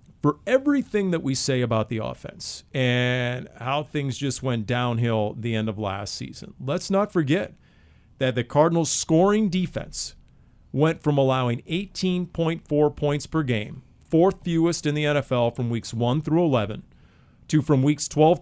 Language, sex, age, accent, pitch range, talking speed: English, male, 40-59, American, 120-155 Hz, 155 wpm